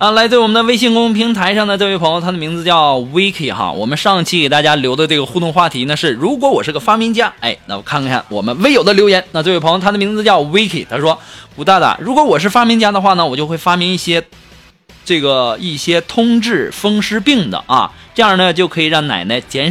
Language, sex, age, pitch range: Chinese, male, 20-39, 160-220 Hz